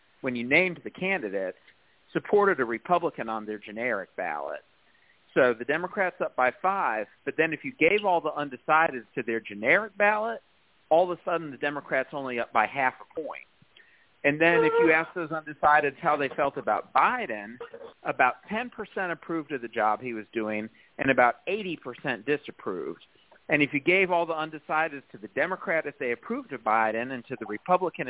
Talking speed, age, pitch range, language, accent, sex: 185 wpm, 40-59, 120-160 Hz, English, American, male